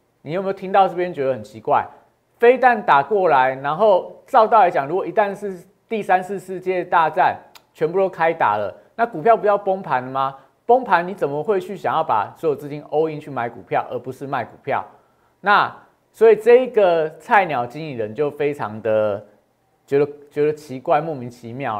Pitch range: 135-205 Hz